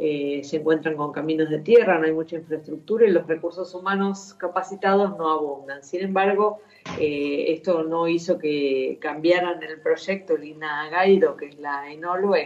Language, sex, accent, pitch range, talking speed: Spanish, female, Argentinian, 155-190 Hz, 165 wpm